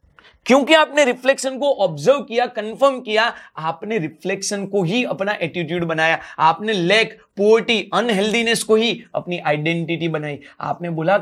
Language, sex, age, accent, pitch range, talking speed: Hindi, male, 30-49, native, 175-250 Hz, 140 wpm